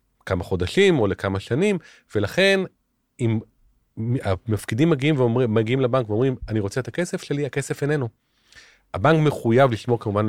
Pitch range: 105-150 Hz